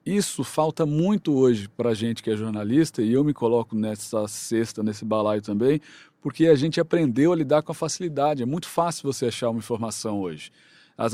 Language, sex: Portuguese, male